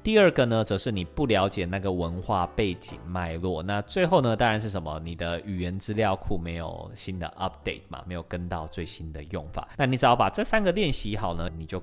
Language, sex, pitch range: Chinese, male, 85-115 Hz